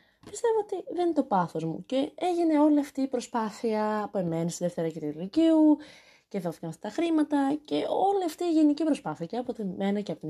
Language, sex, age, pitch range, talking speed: Greek, female, 20-39, 190-300 Hz, 210 wpm